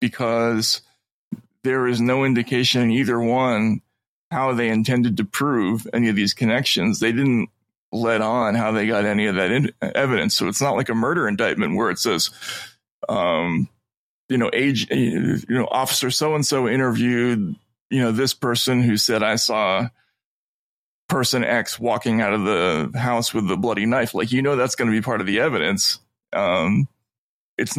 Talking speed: 175 wpm